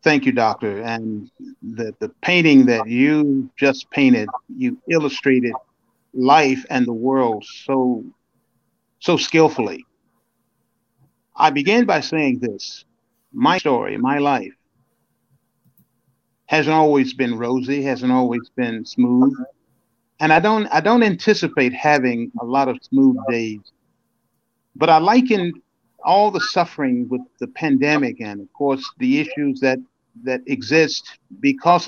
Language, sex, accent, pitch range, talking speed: English, male, American, 125-180 Hz, 125 wpm